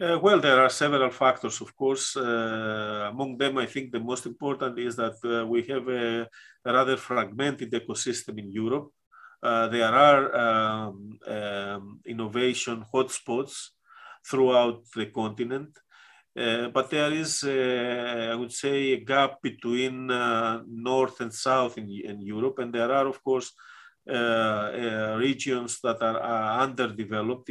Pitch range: 115-135 Hz